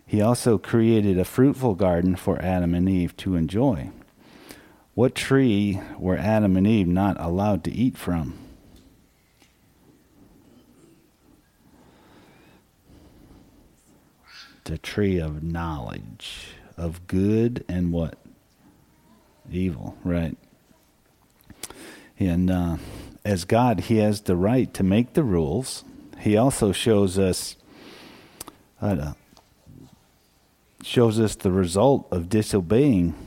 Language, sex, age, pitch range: English, male, 50-69, 90-110 Hz